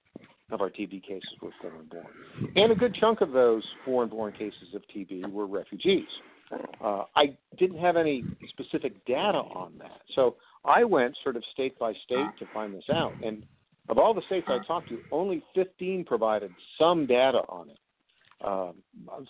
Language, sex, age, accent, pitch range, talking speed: English, male, 50-69, American, 105-165 Hz, 170 wpm